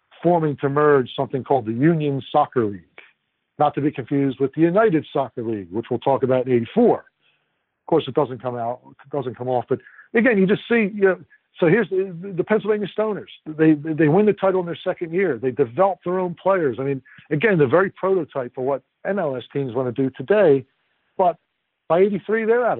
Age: 60-79